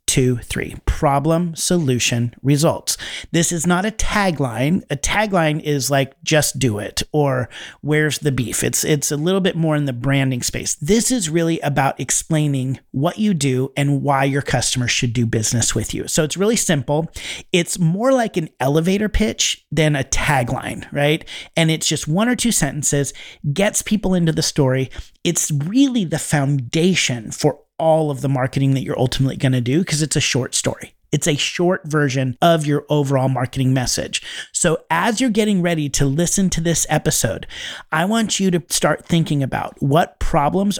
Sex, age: male, 40-59